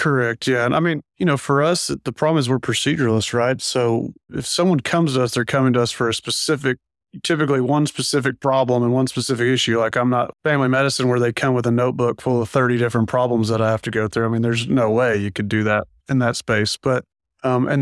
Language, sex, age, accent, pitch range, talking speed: English, male, 30-49, American, 120-135 Hz, 245 wpm